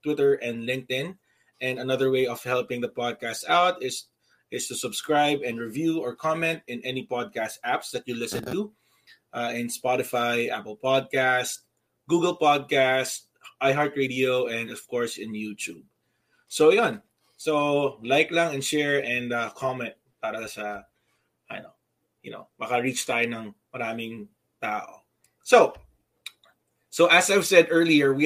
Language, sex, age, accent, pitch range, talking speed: English, male, 20-39, Filipino, 115-150 Hz, 140 wpm